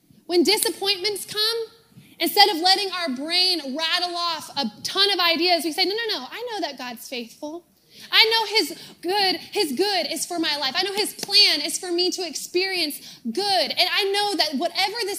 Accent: American